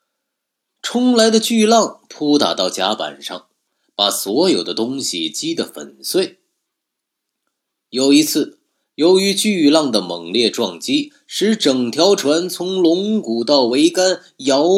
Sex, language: male, Chinese